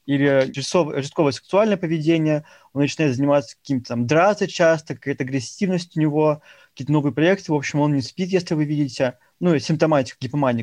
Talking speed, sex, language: 175 wpm, male, Russian